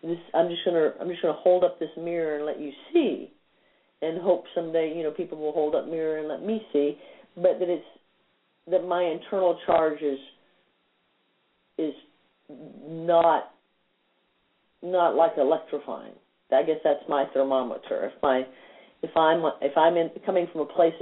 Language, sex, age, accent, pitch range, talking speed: English, female, 50-69, American, 150-180 Hz, 165 wpm